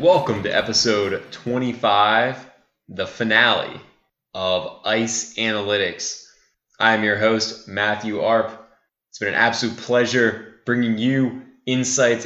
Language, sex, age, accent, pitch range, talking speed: English, male, 10-29, American, 105-120 Hz, 110 wpm